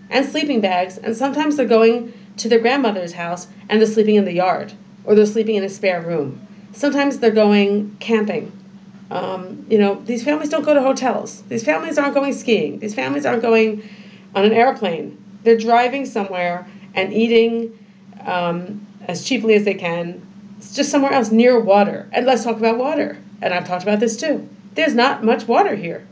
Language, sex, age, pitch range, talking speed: English, female, 40-59, 195-240 Hz, 190 wpm